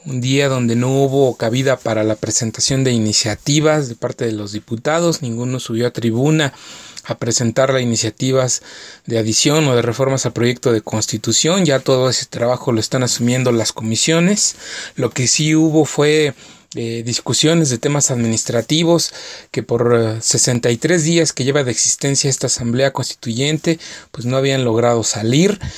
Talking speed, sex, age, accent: 160 wpm, male, 30-49, Mexican